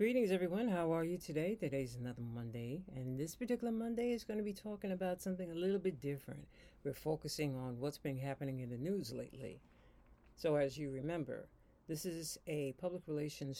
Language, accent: English, American